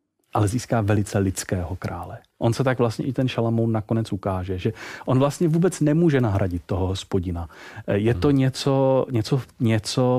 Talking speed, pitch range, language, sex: 155 wpm, 105-140 Hz, Czech, male